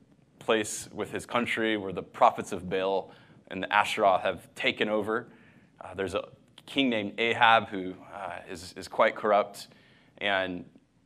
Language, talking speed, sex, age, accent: English, 150 wpm, male, 20-39, American